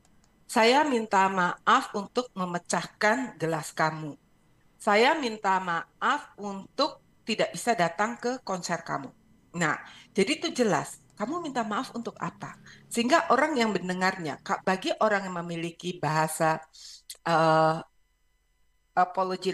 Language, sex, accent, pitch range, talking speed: English, female, Indonesian, 170-235 Hz, 115 wpm